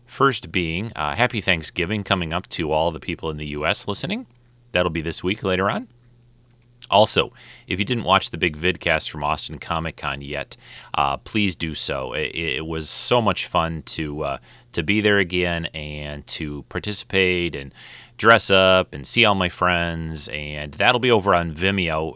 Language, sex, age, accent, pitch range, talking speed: English, male, 30-49, American, 75-100 Hz, 180 wpm